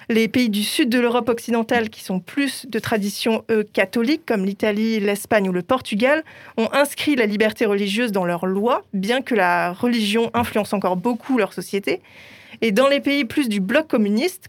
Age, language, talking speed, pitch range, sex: 20-39, French, 180 wpm, 210-250 Hz, female